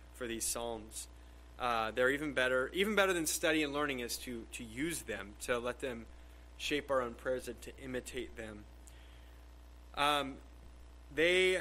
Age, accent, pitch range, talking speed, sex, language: 30-49, American, 115-150 Hz, 160 wpm, male, English